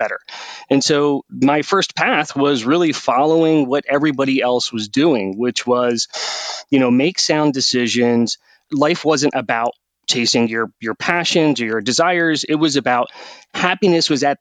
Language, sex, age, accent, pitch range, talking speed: English, male, 30-49, American, 125-155 Hz, 150 wpm